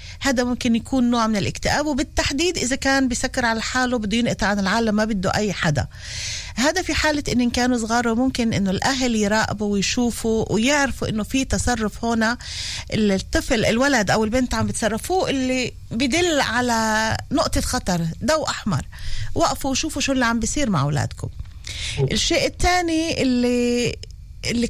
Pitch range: 215-285 Hz